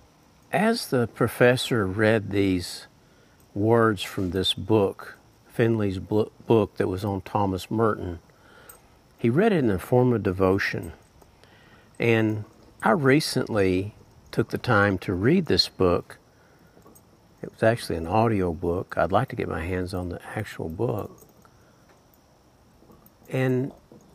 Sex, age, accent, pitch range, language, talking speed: male, 50-69, American, 95-115 Hz, English, 125 wpm